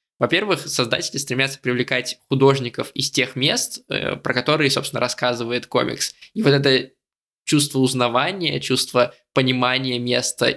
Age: 20-39